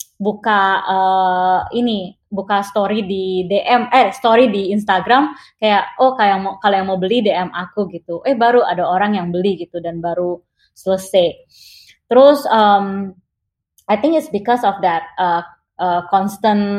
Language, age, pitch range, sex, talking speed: Indonesian, 20-39, 185-220 Hz, female, 145 wpm